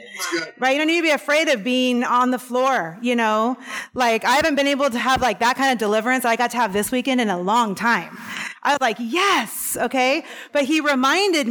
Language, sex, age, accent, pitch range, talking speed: English, female, 30-49, American, 205-255 Hz, 235 wpm